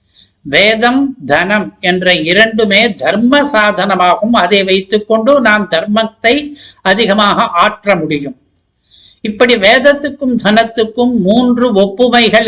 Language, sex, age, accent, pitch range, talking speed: Tamil, male, 60-79, native, 190-235 Hz, 85 wpm